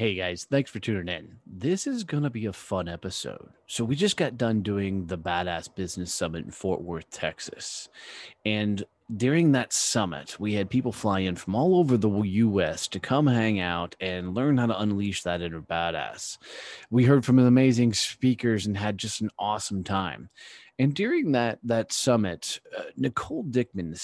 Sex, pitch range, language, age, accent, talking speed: male, 100-130 Hz, English, 30-49, American, 185 wpm